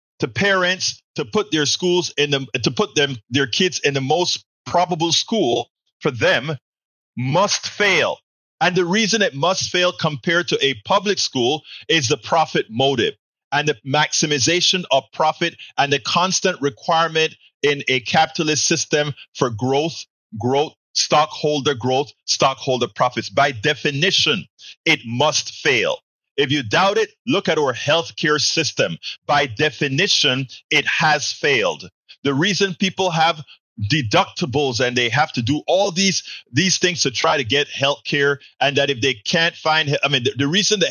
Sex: male